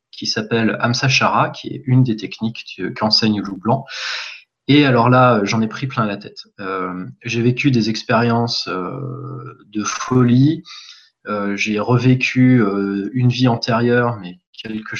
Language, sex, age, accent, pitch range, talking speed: French, male, 20-39, French, 110-130 Hz, 155 wpm